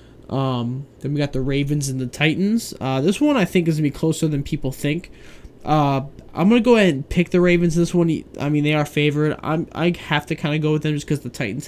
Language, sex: English, male